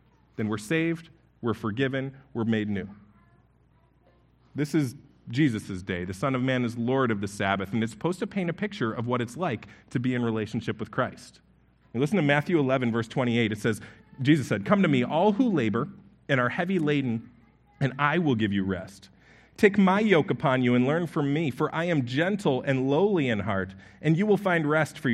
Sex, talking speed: male, 210 wpm